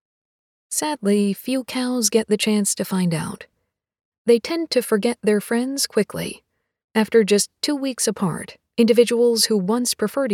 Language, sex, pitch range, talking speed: English, female, 205-250 Hz, 145 wpm